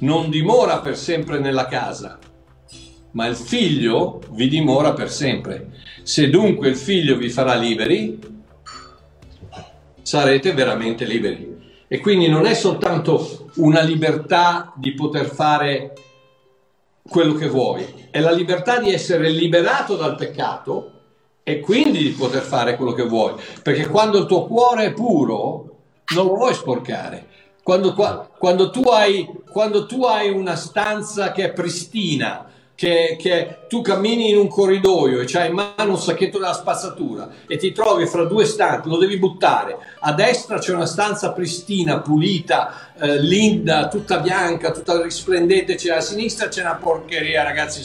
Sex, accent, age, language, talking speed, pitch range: male, native, 60-79, Italian, 150 wpm, 145-195 Hz